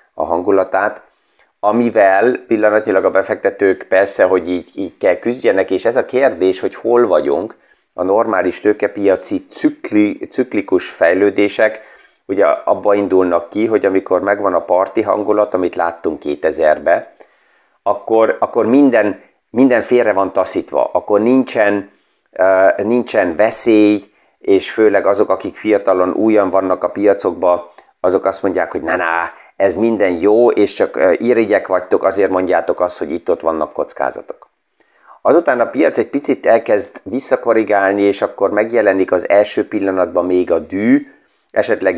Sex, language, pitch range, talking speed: male, Hungarian, 95-120 Hz, 135 wpm